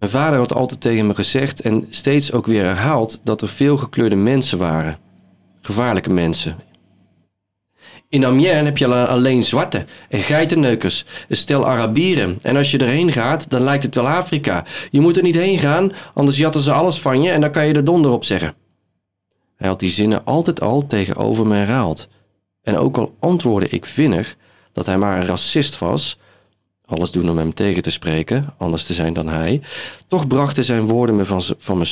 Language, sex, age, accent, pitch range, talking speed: Dutch, male, 40-59, Dutch, 95-140 Hz, 190 wpm